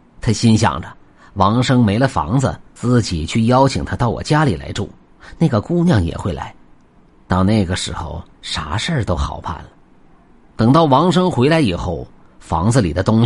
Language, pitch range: Chinese, 90-135 Hz